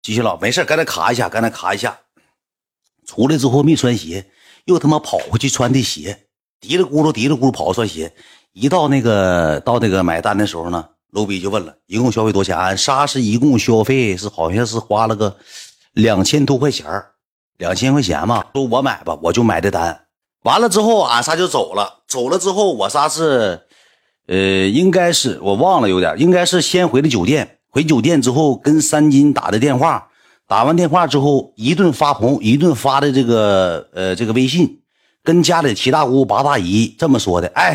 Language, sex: Chinese, male